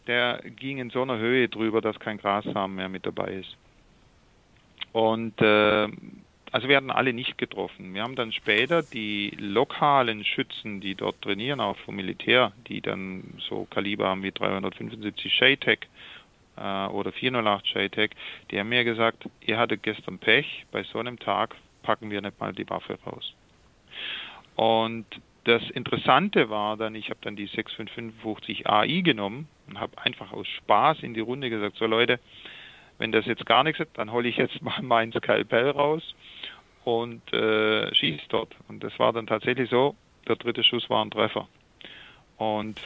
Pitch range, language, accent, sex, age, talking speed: 105-125 Hz, German, German, male, 40-59, 165 wpm